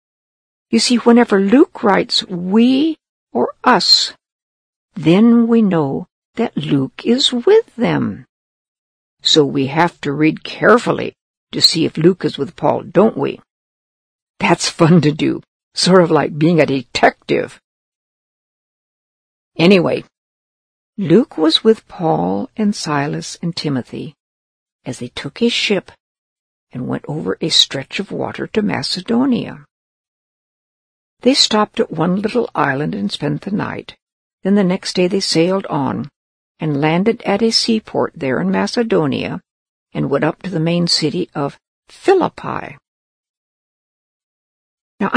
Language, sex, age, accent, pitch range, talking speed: English, female, 60-79, American, 160-230 Hz, 130 wpm